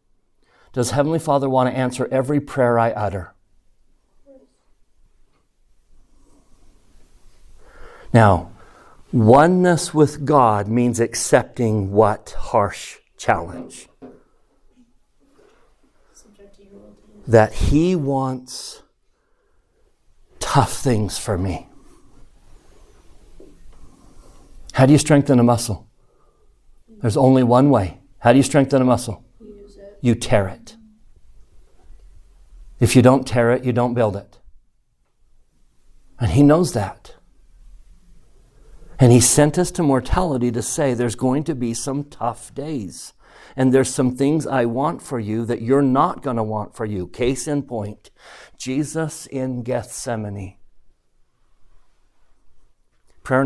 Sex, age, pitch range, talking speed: male, 60-79, 110-140 Hz, 110 wpm